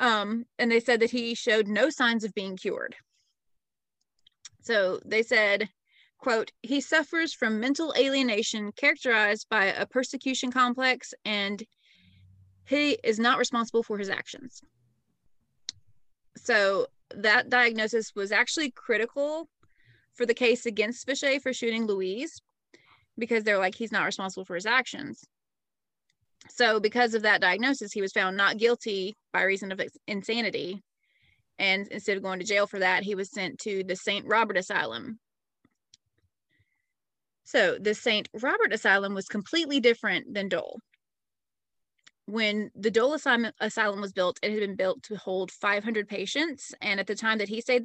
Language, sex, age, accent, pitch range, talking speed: English, female, 30-49, American, 200-250 Hz, 150 wpm